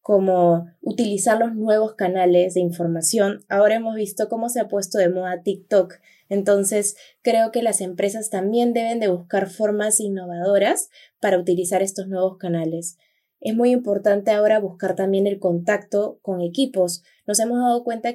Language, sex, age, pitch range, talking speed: Spanish, female, 20-39, 185-225 Hz, 155 wpm